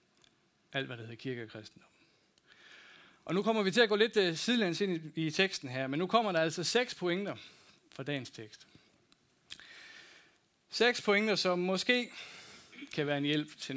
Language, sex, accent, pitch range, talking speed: Danish, male, native, 135-180 Hz, 170 wpm